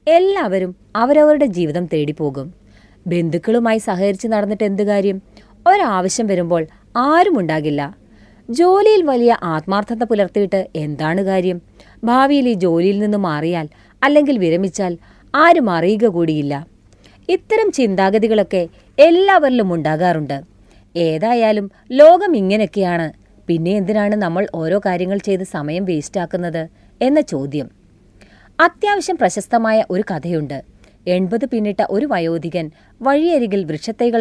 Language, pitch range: Malayalam, 165-235 Hz